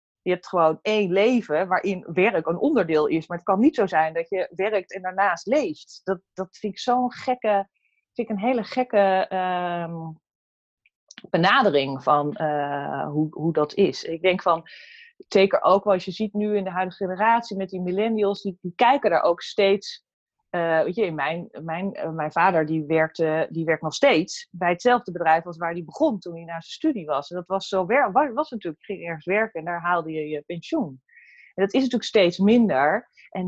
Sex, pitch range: female, 165-210 Hz